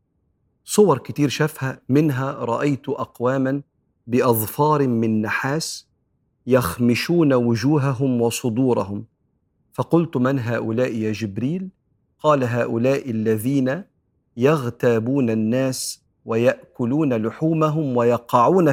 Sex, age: male, 50-69